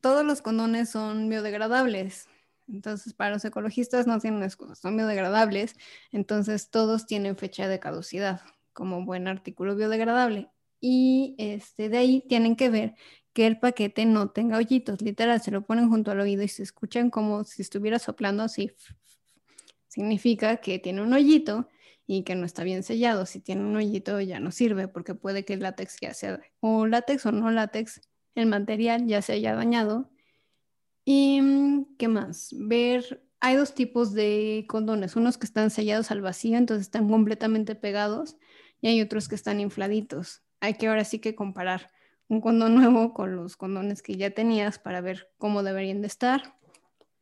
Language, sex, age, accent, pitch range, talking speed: Spanish, female, 20-39, Mexican, 200-235 Hz, 170 wpm